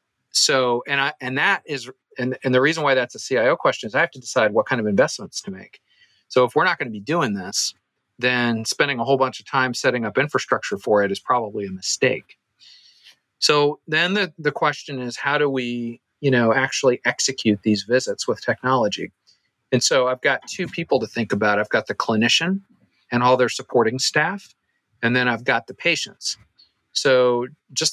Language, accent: English, American